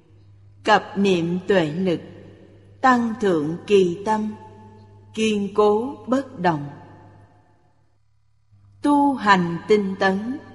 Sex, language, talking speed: female, Vietnamese, 90 wpm